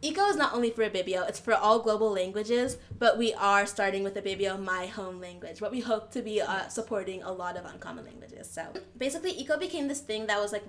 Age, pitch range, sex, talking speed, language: 20-39, 185-225 Hz, female, 230 wpm, English